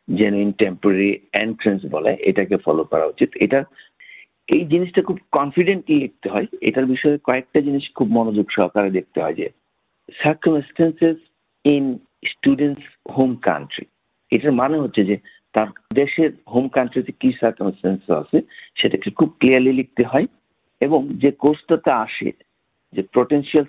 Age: 50-69